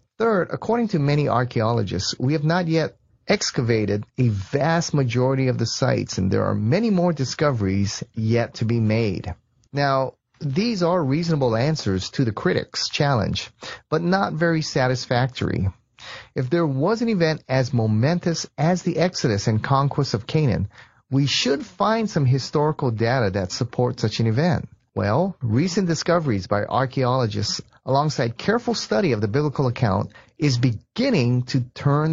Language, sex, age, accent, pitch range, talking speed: English, male, 30-49, American, 115-165 Hz, 150 wpm